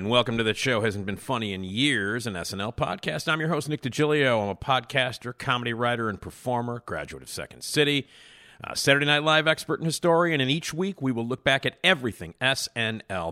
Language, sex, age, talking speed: English, male, 50-69, 210 wpm